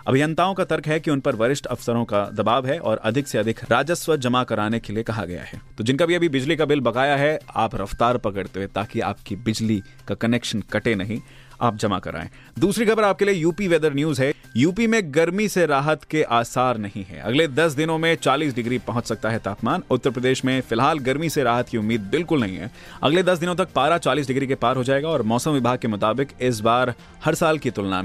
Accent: native